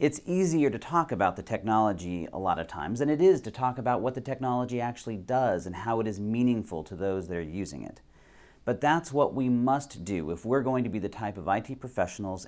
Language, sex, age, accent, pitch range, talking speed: English, male, 40-59, American, 95-135 Hz, 235 wpm